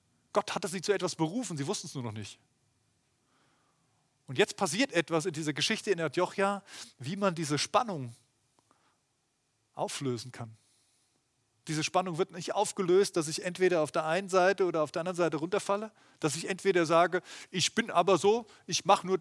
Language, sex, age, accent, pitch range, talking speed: German, male, 30-49, German, 140-195 Hz, 175 wpm